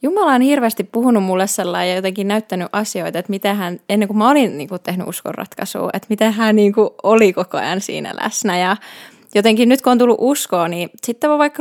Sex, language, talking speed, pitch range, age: female, Finnish, 215 wpm, 195-240 Hz, 20-39